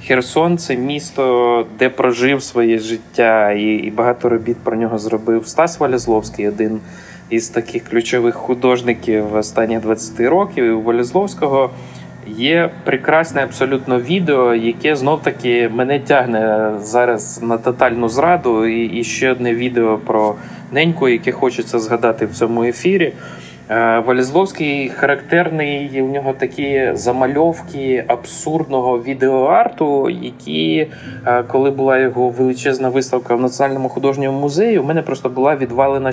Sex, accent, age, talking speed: male, native, 20-39, 130 wpm